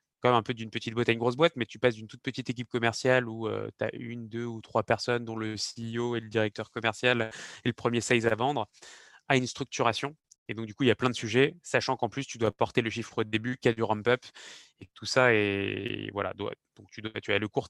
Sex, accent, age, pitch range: male, French, 20-39, 110-125 Hz